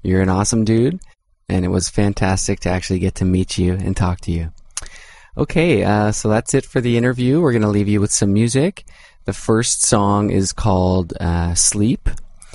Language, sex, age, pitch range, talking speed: English, male, 20-39, 95-110 Hz, 195 wpm